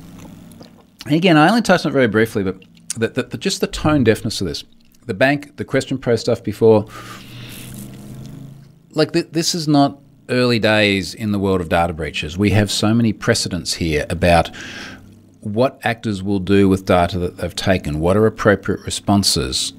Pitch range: 85-115 Hz